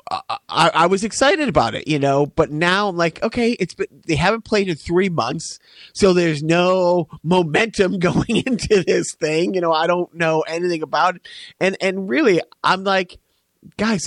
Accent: American